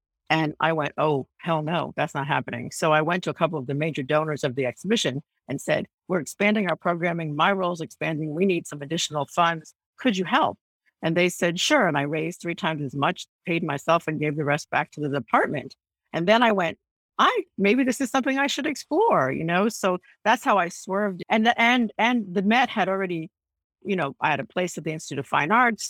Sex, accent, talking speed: female, American, 230 wpm